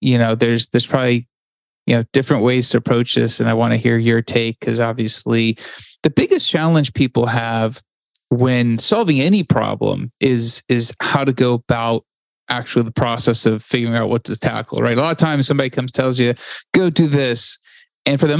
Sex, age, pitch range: male, 30-49, 120-155 Hz